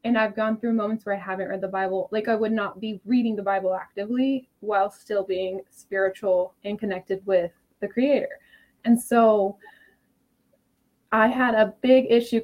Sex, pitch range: female, 200-255 Hz